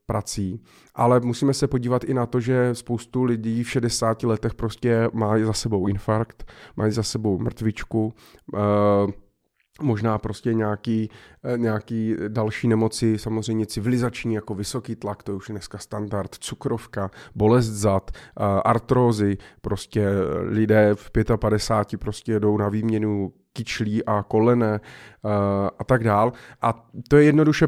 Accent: native